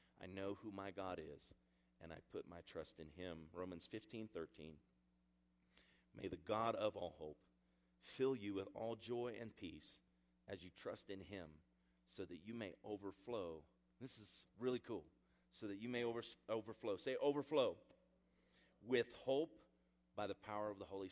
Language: English